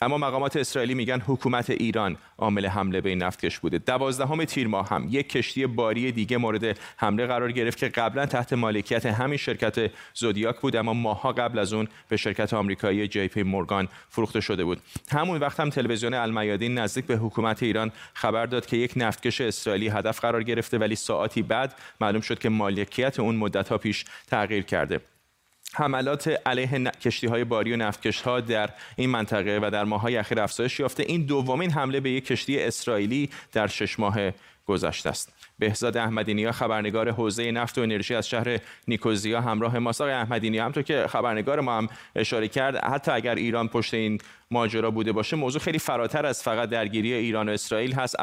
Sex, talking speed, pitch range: male, 180 wpm, 110-130 Hz